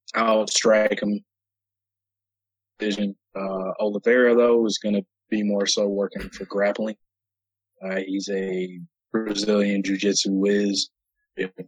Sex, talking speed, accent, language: male, 110 wpm, American, English